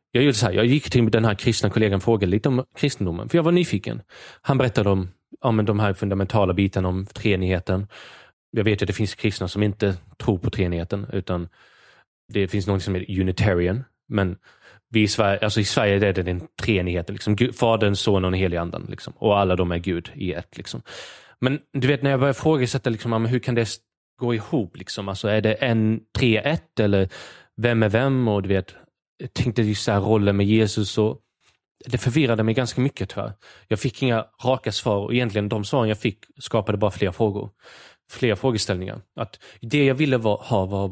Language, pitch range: English, 100-120 Hz